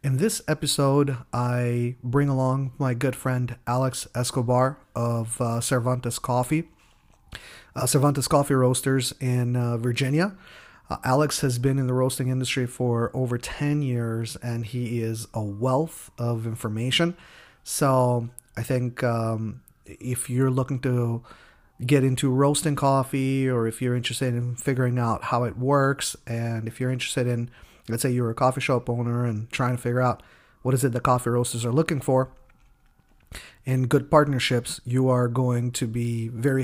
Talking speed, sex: 160 wpm, male